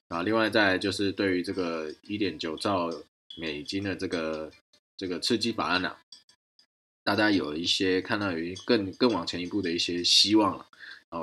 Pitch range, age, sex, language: 85-105 Hz, 20-39, male, Chinese